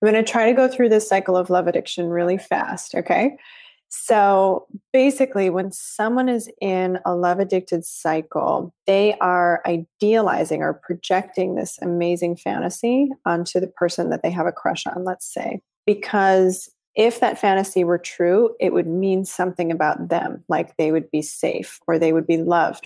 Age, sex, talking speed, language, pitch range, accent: 30-49, female, 175 wpm, English, 175-215 Hz, American